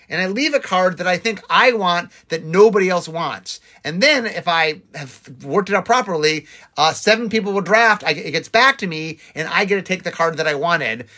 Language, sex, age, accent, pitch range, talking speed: English, male, 30-49, American, 155-215 Hz, 230 wpm